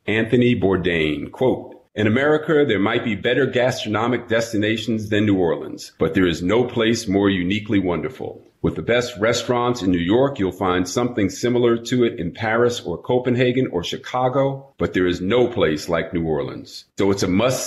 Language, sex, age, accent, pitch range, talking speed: English, male, 40-59, American, 95-120 Hz, 180 wpm